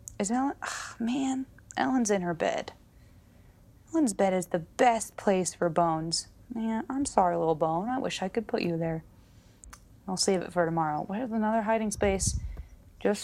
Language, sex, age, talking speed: English, female, 20-39, 170 wpm